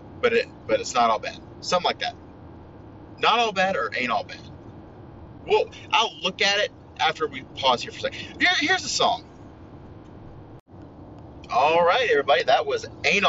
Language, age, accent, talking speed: English, 30-49, American, 175 wpm